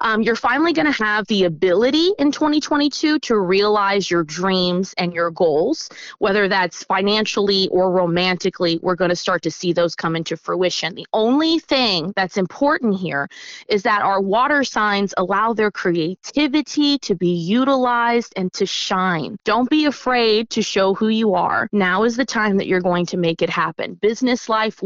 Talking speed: 175 wpm